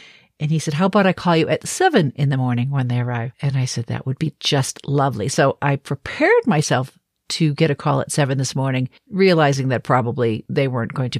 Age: 50-69